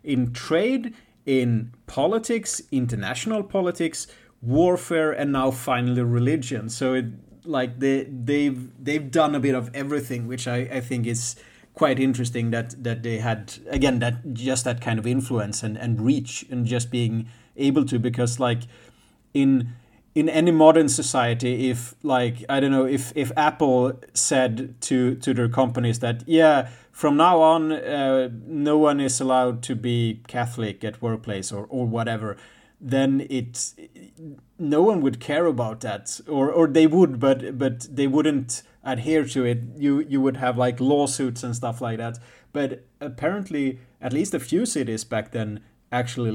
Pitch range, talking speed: 120-145 Hz, 160 wpm